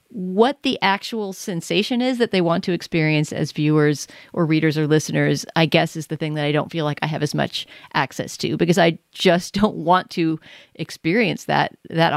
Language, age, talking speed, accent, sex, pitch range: English, 40-59, 200 wpm, American, female, 155-185 Hz